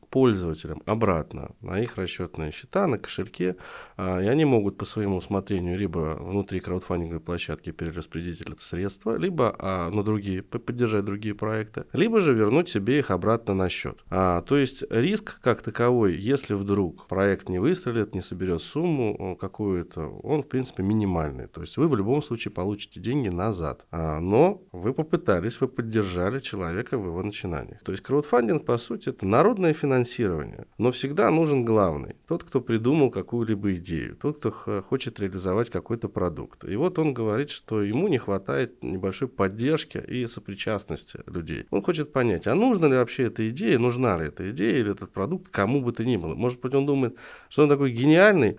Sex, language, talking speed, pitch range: male, Russian, 170 wpm, 95-125 Hz